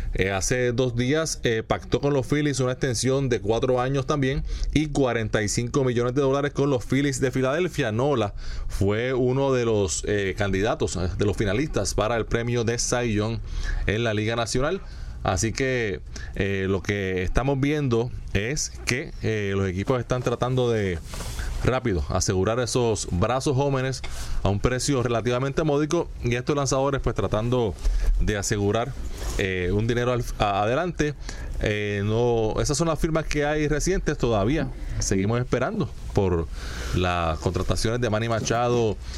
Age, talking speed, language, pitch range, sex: 20-39, 155 wpm, English, 95-130 Hz, male